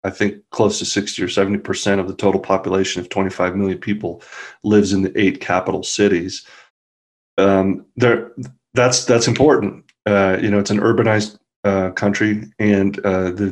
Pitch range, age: 95-115 Hz, 30-49